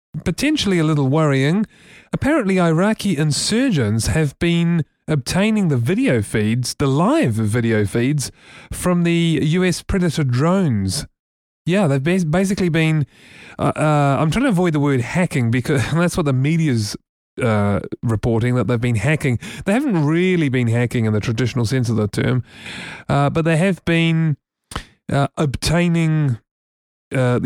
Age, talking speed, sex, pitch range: 30-49, 145 wpm, male, 120-170 Hz